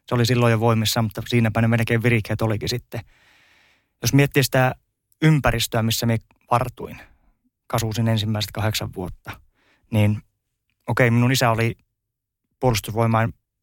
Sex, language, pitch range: male, Finnish, 110-125 Hz